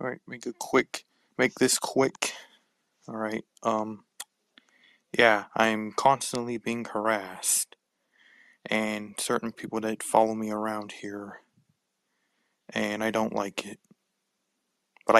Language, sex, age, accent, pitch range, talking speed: English, male, 20-39, American, 110-125 Hz, 110 wpm